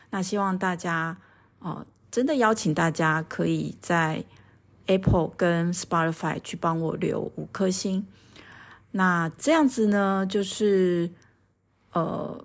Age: 30-49